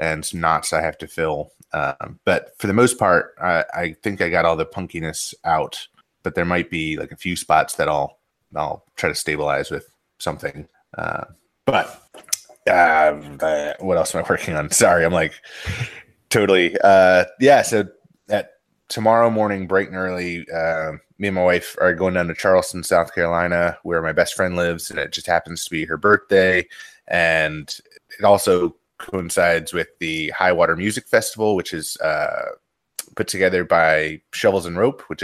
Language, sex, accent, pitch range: English, male, American, 80-95 Hz